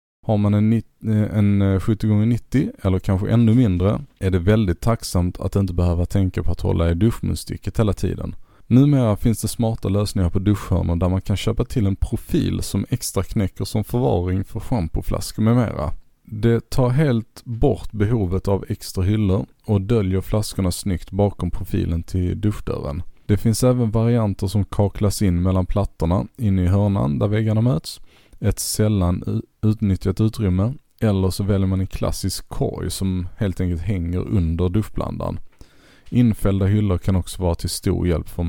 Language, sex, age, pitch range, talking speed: Swedish, male, 30-49, 90-110 Hz, 160 wpm